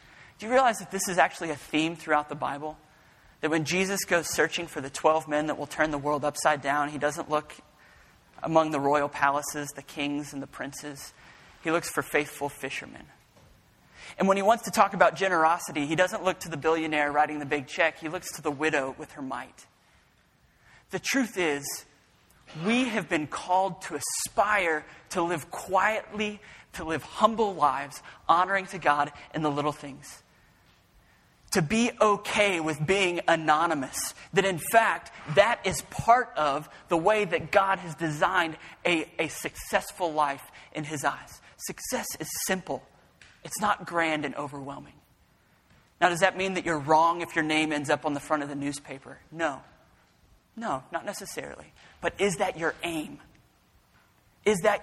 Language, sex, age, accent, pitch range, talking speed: English, male, 30-49, American, 150-185 Hz, 170 wpm